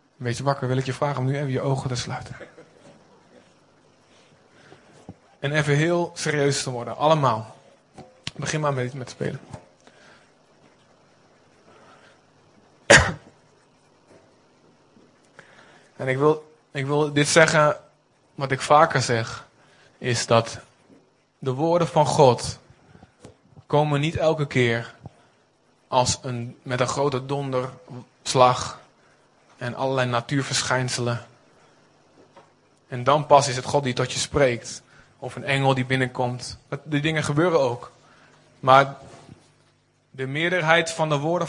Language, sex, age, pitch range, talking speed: Dutch, male, 20-39, 125-145 Hz, 115 wpm